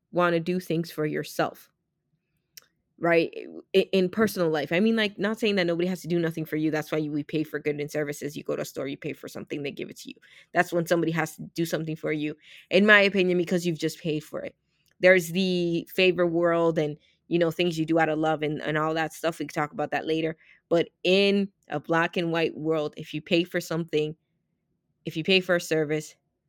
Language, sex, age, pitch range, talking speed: English, female, 20-39, 155-180 Hz, 240 wpm